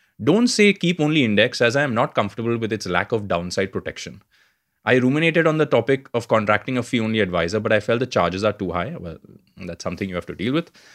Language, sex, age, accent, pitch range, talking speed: English, male, 20-39, Indian, 105-150 Hz, 230 wpm